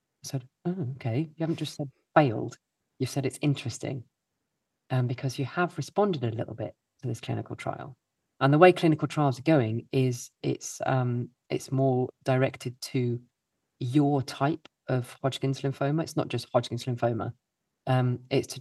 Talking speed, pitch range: 170 wpm, 125-145 Hz